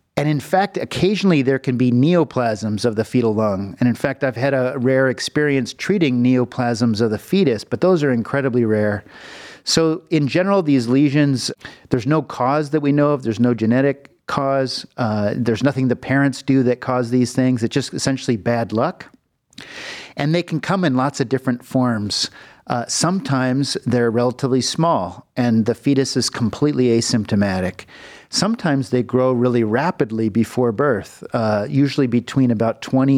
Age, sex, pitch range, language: 50-69, male, 120-140 Hz, English